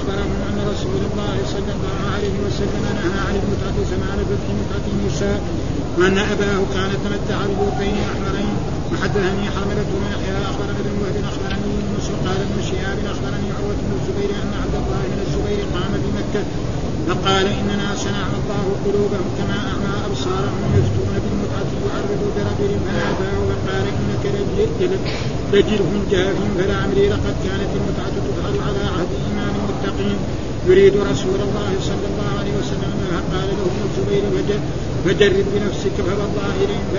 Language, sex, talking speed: Arabic, male, 135 wpm